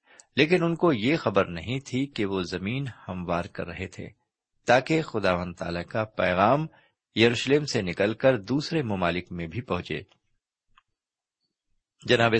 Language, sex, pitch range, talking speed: Urdu, male, 95-130 Hz, 135 wpm